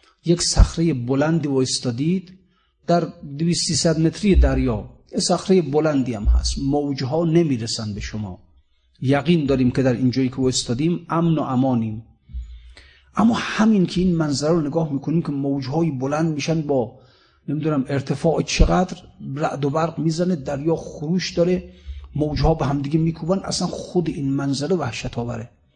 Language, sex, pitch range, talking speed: Persian, male, 130-170 Hz, 155 wpm